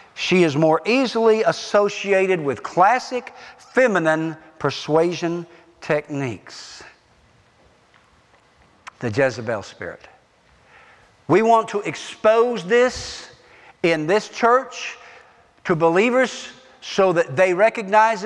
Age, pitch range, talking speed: 50-69, 155-225 Hz, 90 wpm